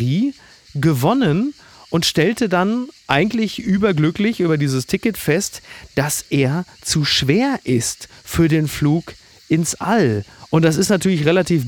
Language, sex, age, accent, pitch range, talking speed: German, male, 40-59, German, 130-180 Hz, 130 wpm